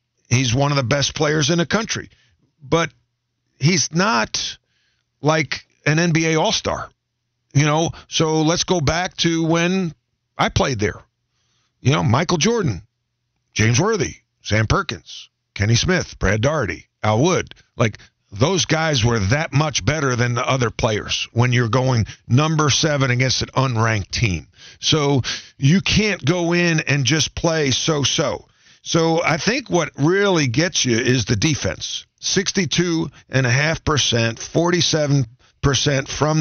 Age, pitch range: 50-69, 120-160 Hz